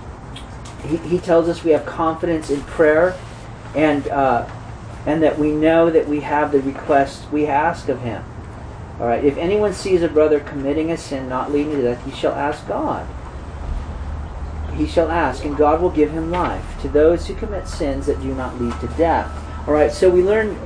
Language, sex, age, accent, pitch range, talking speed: English, male, 40-59, American, 100-165 Hz, 190 wpm